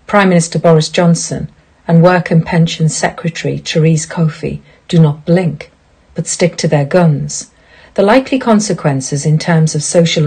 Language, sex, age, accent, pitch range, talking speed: English, female, 40-59, British, 155-190 Hz, 150 wpm